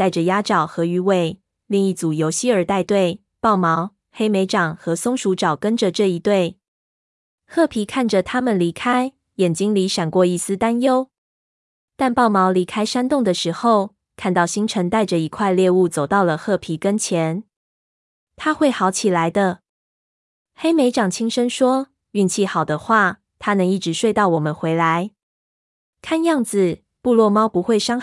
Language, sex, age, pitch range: Chinese, female, 20-39, 170-220 Hz